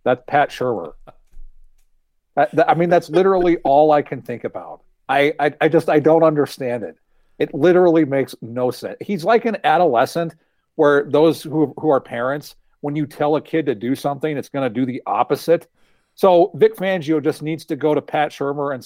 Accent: American